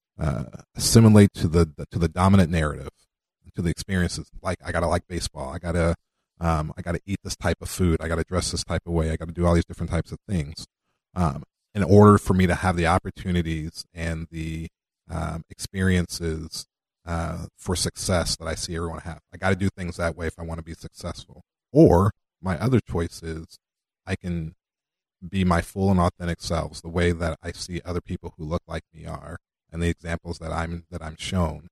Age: 30-49